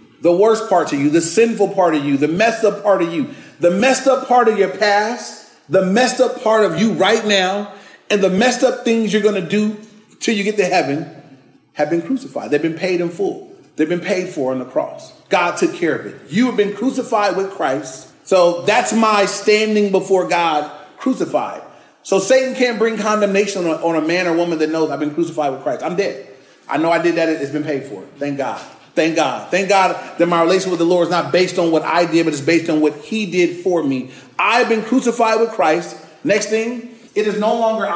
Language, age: English, 30-49